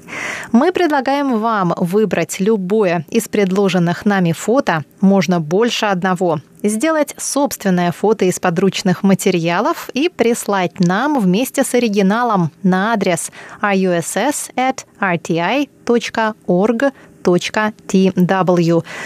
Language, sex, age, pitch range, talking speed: Russian, female, 20-39, 180-235 Hz, 85 wpm